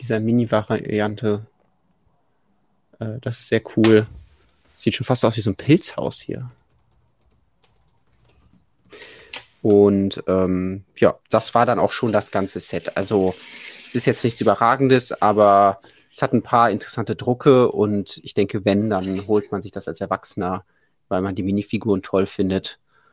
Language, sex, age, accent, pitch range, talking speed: German, male, 30-49, German, 95-120 Hz, 150 wpm